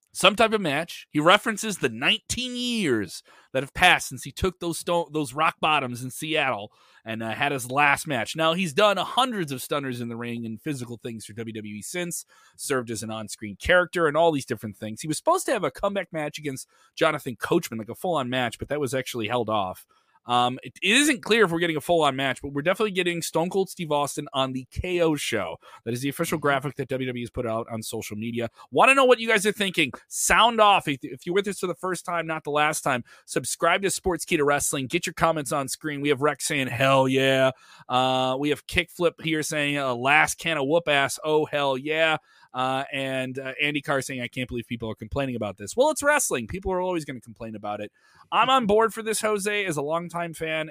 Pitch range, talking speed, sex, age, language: 130-175 Hz, 235 wpm, male, 30-49, English